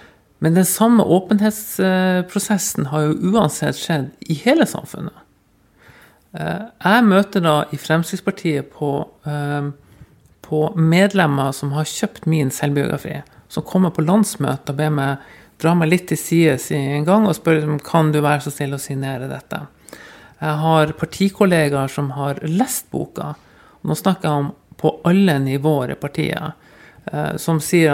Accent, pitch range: Swedish, 145-180 Hz